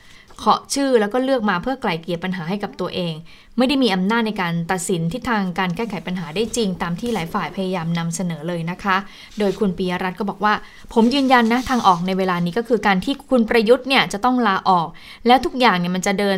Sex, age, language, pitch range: female, 20-39, Thai, 185-230 Hz